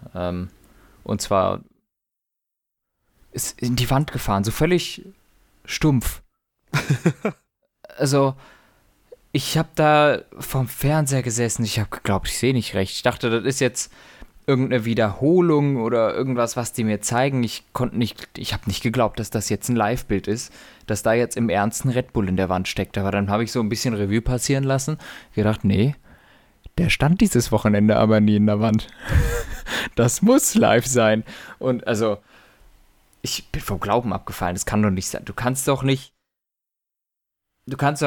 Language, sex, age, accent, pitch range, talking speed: German, male, 20-39, German, 105-135 Hz, 160 wpm